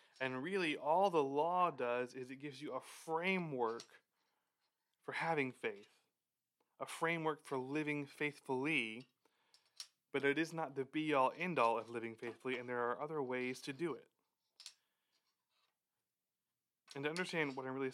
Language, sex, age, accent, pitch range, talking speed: English, male, 20-39, American, 120-155 Hz, 145 wpm